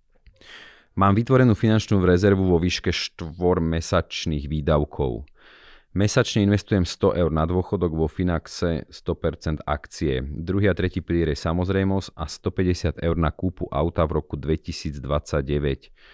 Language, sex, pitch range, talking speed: Slovak, male, 75-90 Hz, 125 wpm